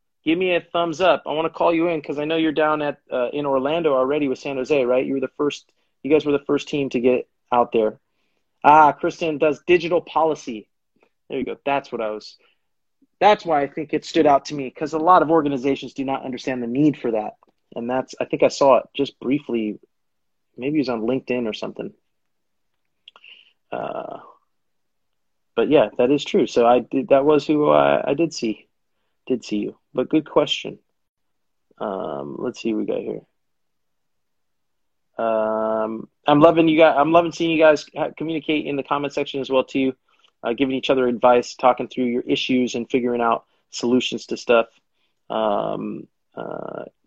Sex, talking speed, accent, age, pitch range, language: male, 200 wpm, American, 30-49, 120-155 Hz, English